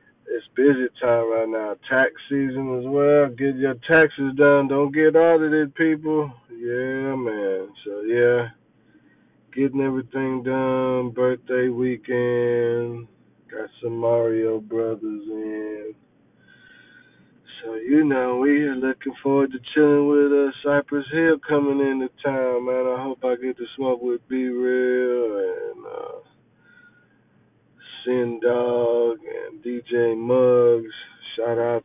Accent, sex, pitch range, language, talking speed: American, male, 120-140 Hz, English, 120 wpm